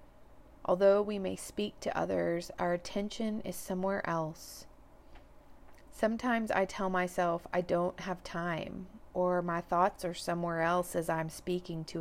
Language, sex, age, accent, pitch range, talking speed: English, female, 40-59, American, 170-190 Hz, 145 wpm